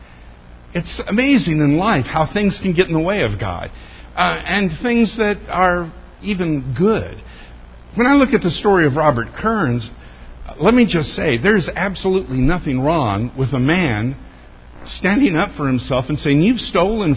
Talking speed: 170 wpm